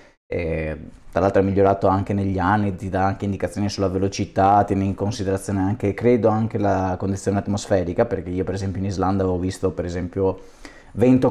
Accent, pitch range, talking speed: native, 95-115 Hz, 180 wpm